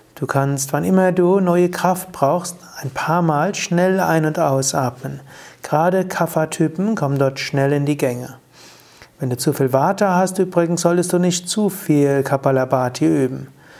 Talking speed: 160 wpm